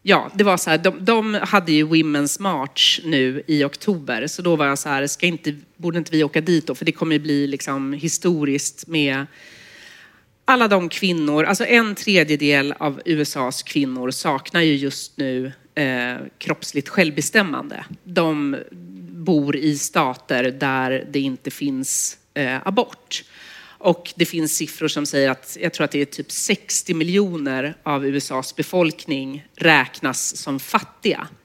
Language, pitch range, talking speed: Swedish, 140-175 Hz, 140 wpm